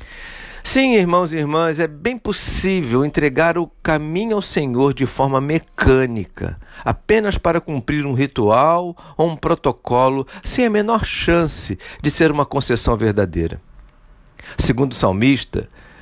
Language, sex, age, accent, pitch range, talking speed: Portuguese, male, 50-69, Brazilian, 120-175 Hz, 130 wpm